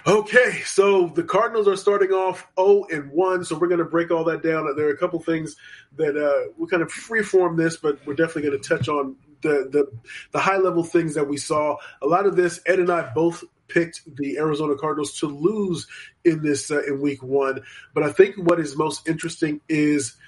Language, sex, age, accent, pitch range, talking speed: English, male, 20-39, American, 140-175 Hz, 220 wpm